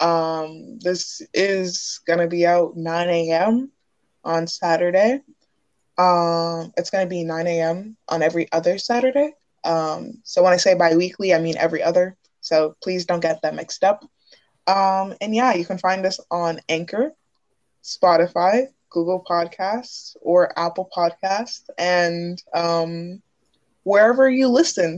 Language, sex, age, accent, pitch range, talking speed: English, female, 20-39, American, 170-215 Hz, 140 wpm